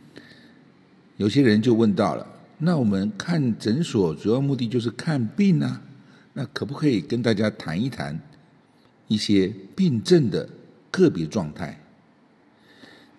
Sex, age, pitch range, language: male, 60-79, 105-140 Hz, Chinese